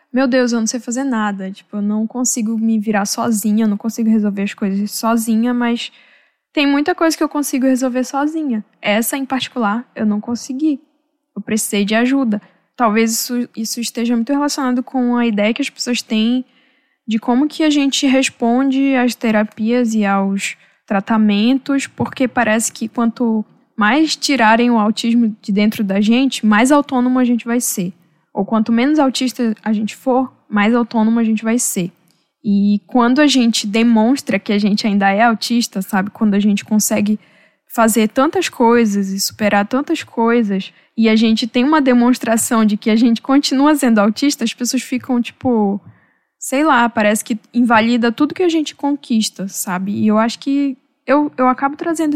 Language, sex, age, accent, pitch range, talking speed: Portuguese, female, 10-29, Brazilian, 215-260 Hz, 175 wpm